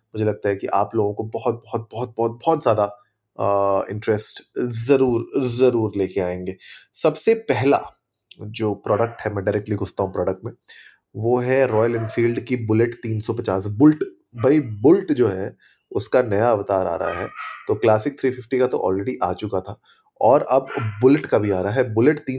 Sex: male